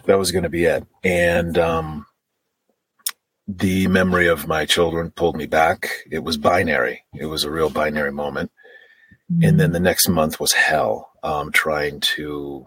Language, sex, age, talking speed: English, male, 40-59, 165 wpm